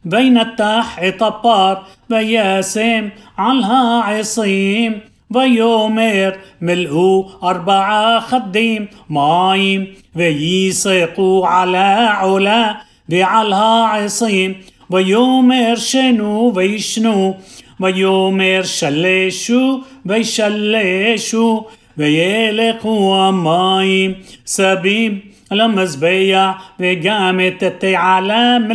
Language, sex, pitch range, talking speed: Hebrew, male, 190-220 Hz, 60 wpm